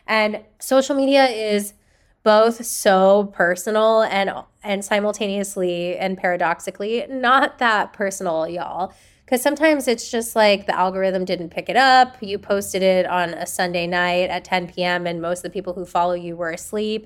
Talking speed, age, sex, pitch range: 165 wpm, 10-29, female, 180-235 Hz